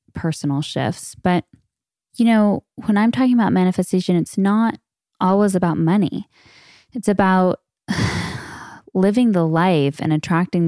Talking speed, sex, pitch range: 125 wpm, female, 155-195 Hz